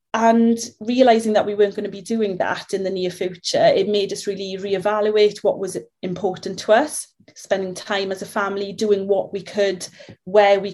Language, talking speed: English, 195 wpm